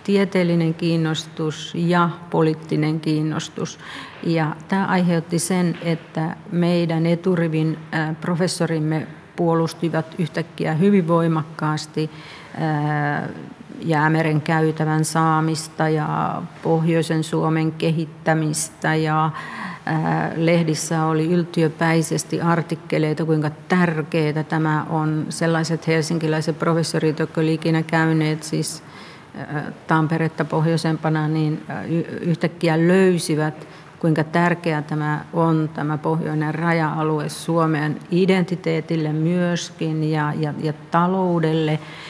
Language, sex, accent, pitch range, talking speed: Finnish, female, native, 155-170 Hz, 85 wpm